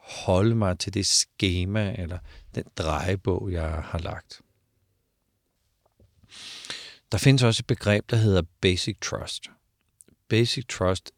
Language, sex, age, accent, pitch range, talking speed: Danish, male, 50-69, native, 90-110 Hz, 120 wpm